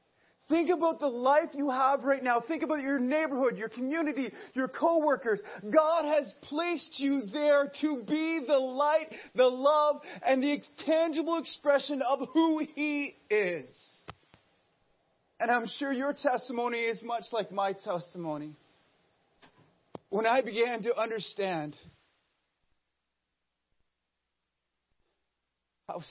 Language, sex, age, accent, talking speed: English, male, 30-49, American, 120 wpm